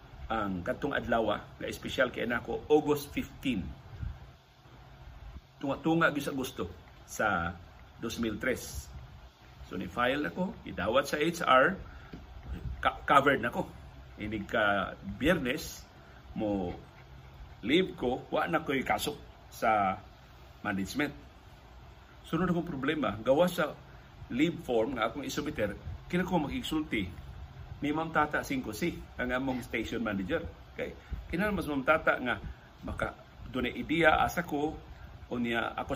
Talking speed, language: 115 wpm, Filipino